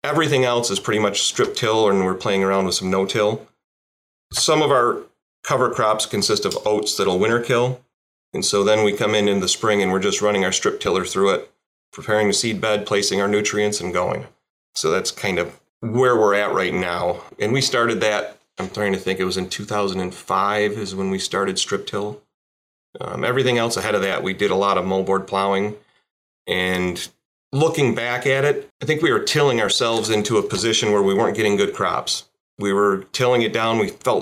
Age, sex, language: 30-49, male, English